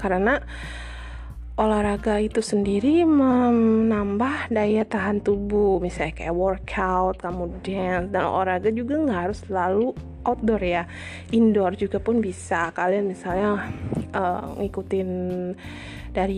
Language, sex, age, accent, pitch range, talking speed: Indonesian, female, 20-39, native, 180-215 Hz, 110 wpm